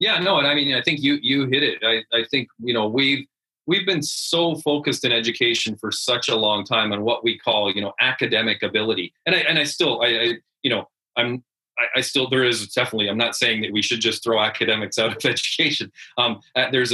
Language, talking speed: English, 235 wpm